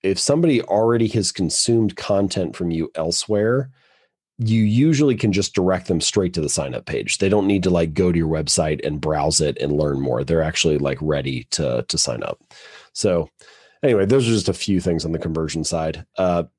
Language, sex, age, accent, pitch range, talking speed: English, male, 30-49, American, 80-105 Hz, 205 wpm